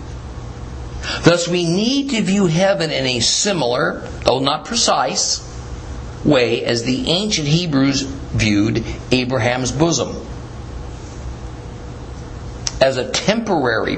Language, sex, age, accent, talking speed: English, male, 50-69, American, 100 wpm